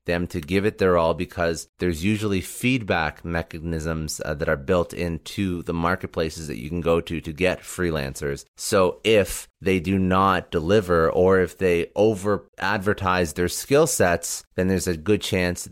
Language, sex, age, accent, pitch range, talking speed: English, male, 30-49, American, 80-95 Hz, 170 wpm